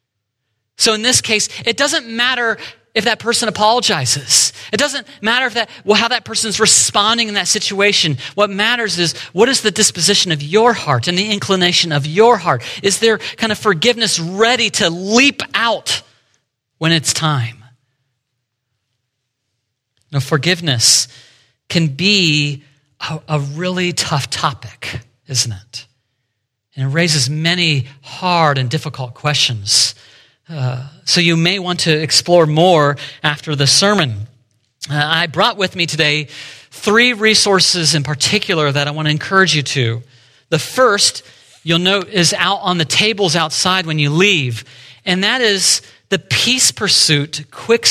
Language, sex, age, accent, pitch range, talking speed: English, male, 40-59, American, 130-205 Hz, 150 wpm